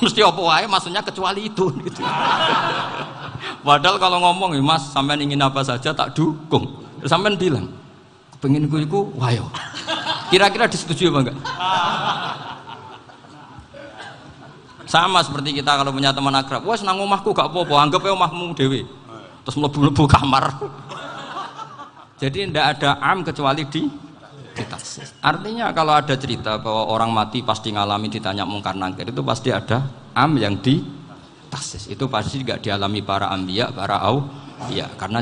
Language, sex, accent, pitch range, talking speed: Indonesian, male, native, 105-145 Hz, 130 wpm